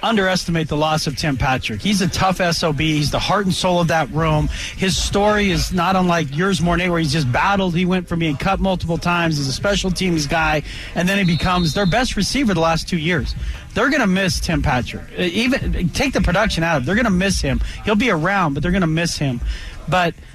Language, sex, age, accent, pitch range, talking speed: English, male, 40-59, American, 160-200 Hz, 235 wpm